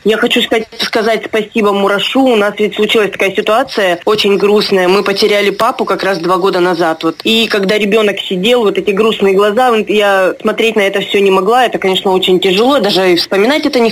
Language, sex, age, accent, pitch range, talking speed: Russian, female, 20-39, native, 200-235 Hz, 205 wpm